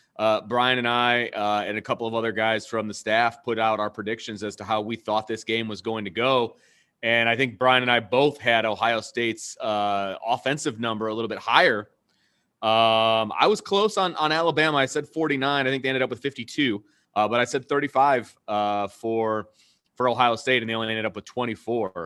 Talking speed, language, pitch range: 220 wpm, English, 110-145 Hz